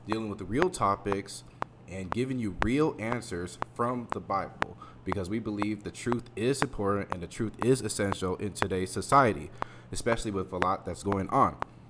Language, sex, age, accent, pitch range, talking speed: English, male, 20-39, American, 95-120 Hz, 175 wpm